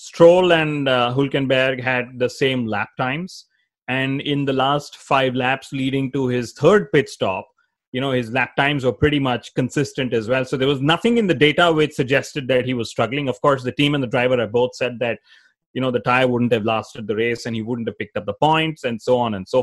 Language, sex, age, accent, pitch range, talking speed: English, male, 30-49, Indian, 125-160 Hz, 240 wpm